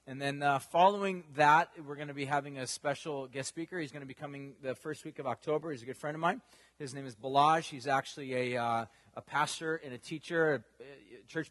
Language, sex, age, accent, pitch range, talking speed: English, male, 30-49, American, 135-160 Hz, 235 wpm